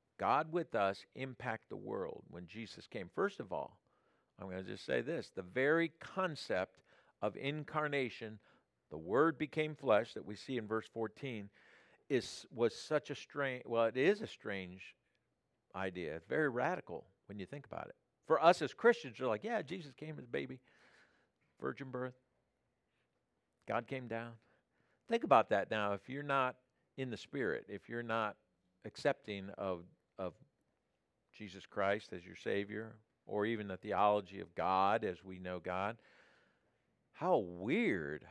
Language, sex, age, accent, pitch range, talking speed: English, male, 50-69, American, 105-145 Hz, 160 wpm